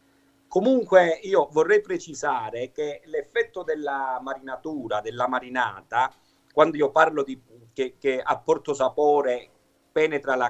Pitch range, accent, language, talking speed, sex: 115-185 Hz, native, Italian, 115 wpm, male